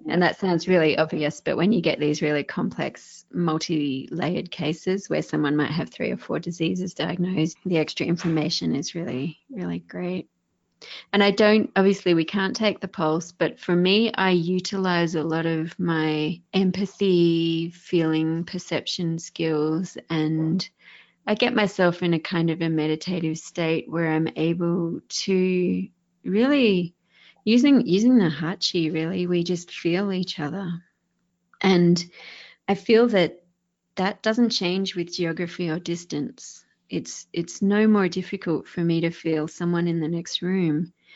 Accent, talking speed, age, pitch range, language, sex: Australian, 150 wpm, 30-49, 160-185 Hz, English, female